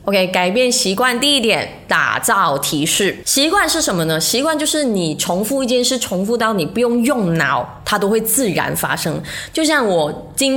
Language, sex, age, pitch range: Chinese, female, 20-39, 180-255 Hz